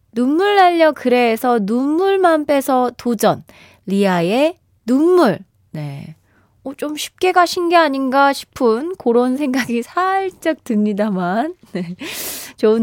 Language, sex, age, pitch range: Korean, female, 20-39, 210-310 Hz